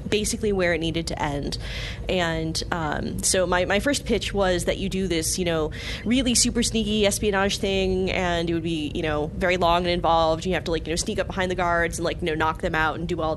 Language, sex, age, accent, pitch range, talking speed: English, female, 20-39, American, 165-195 Hz, 250 wpm